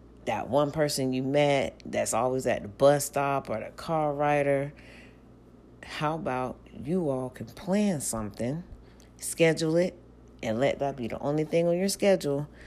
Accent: American